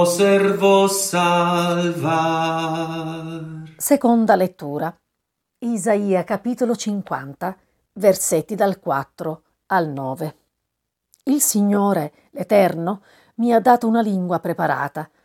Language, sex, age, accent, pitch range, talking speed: Italian, female, 40-59, native, 160-205 Hz, 85 wpm